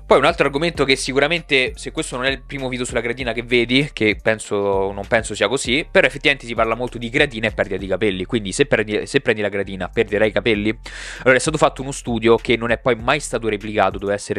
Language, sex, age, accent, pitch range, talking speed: Italian, male, 20-39, native, 100-115 Hz, 245 wpm